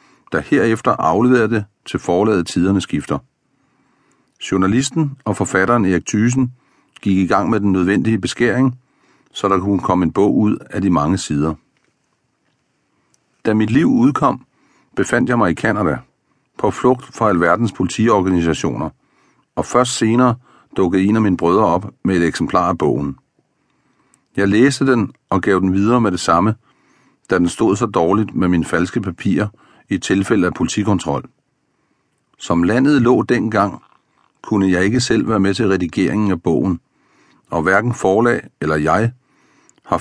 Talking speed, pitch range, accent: 155 wpm, 95-120 Hz, native